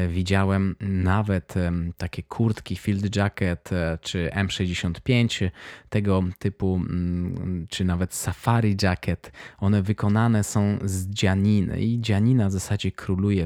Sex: male